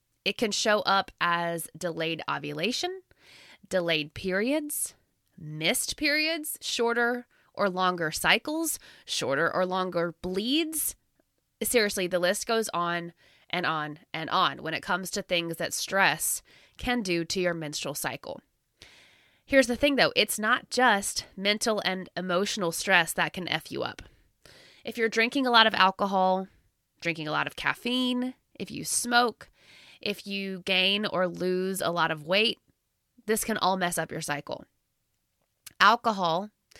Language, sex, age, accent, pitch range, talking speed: English, female, 20-39, American, 170-225 Hz, 145 wpm